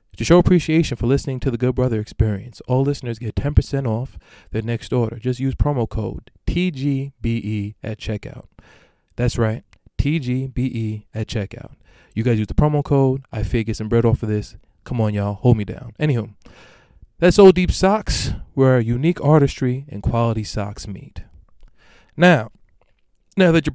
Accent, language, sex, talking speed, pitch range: American, English, male, 170 wpm, 110-135 Hz